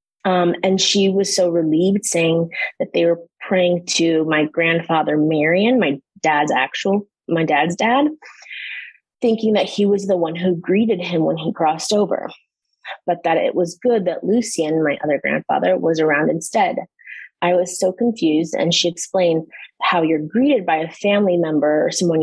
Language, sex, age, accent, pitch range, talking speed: English, female, 20-39, American, 160-200 Hz, 170 wpm